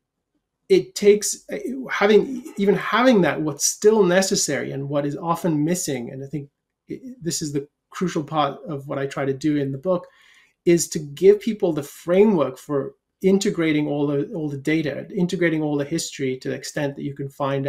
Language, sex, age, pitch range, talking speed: English, male, 30-49, 145-190 Hz, 185 wpm